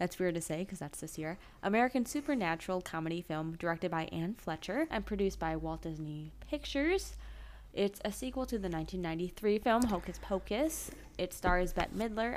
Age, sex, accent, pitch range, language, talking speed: 20-39, female, American, 165-215 Hz, English, 170 wpm